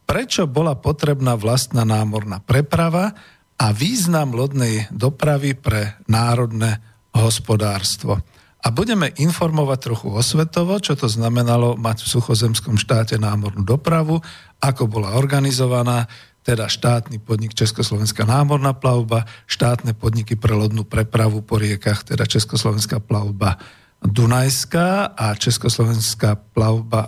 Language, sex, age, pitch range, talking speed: Slovak, male, 50-69, 110-140 Hz, 110 wpm